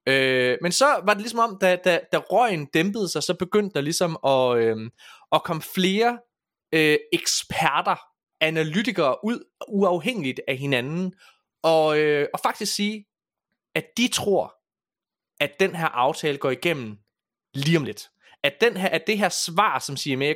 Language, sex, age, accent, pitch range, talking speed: Danish, male, 20-39, native, 140-195 Hz, 160 wpm